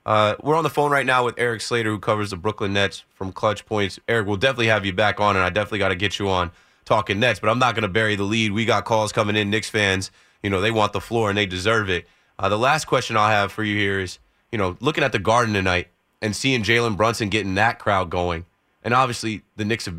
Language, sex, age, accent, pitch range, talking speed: English, male, 30-49, American, 95-115 Hz, 270 wpm